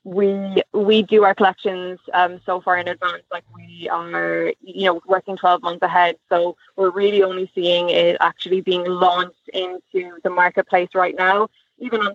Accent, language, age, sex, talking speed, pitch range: Irish, English, 20-39, female, 175 wpm, 180-195 Hz